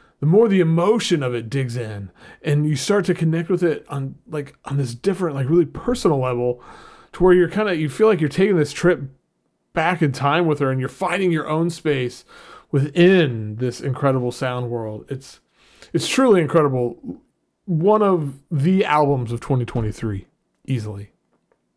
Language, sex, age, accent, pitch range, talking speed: English, male, 30-49, American, 130-170 Hz, 180 wpm